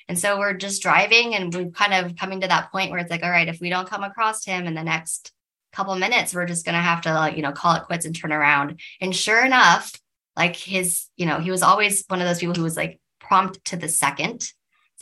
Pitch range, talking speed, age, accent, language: 160-185 Hz, 270 wpm, 20-39, American, English